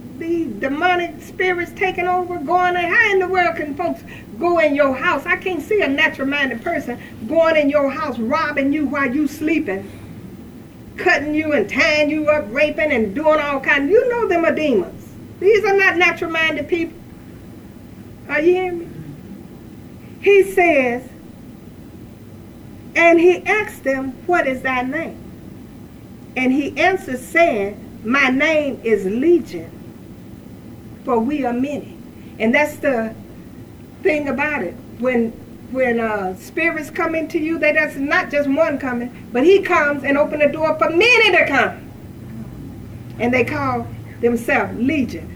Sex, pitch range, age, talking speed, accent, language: female, 275-360 Hz, 50-69, 155 wpm, American, English